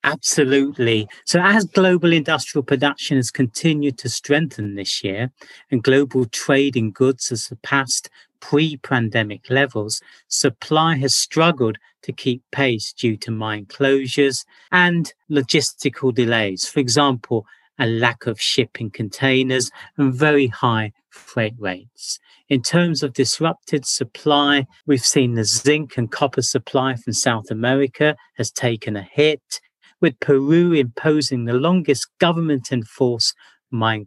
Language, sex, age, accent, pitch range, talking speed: English, male, 40-59, British, 115-145 Hz, 125 wpm